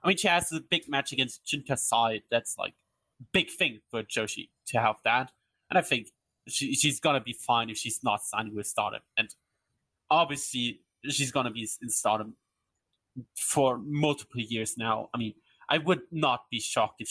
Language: English